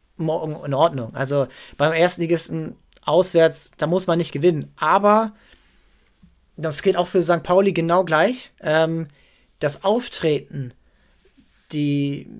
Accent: German